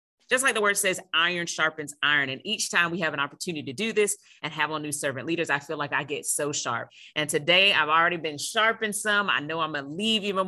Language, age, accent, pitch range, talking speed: English, 30-49, American, 150-185 Hz, 250 wpm